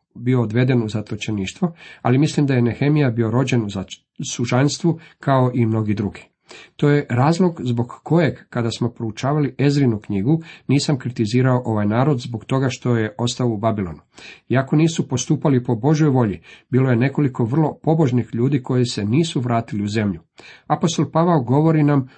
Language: Croatian